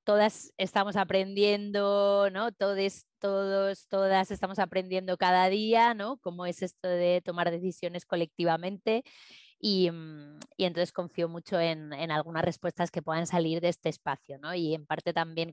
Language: Spanish